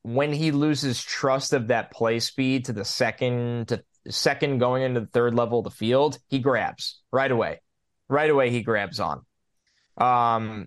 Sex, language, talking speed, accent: male, English, 175 wpm, American